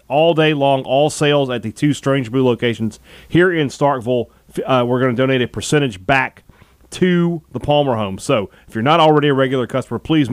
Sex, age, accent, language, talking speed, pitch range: male, 30-49, American, English, 205 wpm, 120-150 Hz